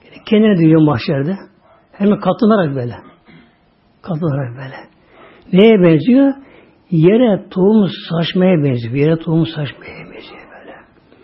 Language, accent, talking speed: Turkish, native, 100 wpm